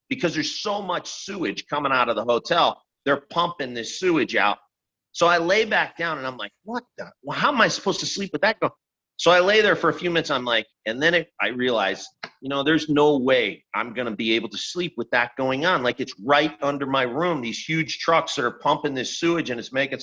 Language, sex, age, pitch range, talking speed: English, male, 40-59, 120-170 Hz, 245 wpm